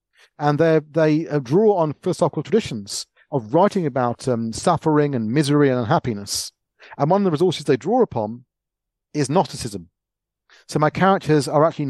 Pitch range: 125-165 Hz